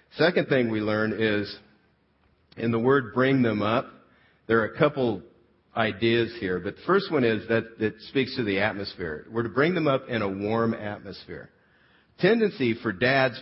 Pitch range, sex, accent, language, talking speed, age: 100-125 Hz, male, American, English, 180 wpm, 50-69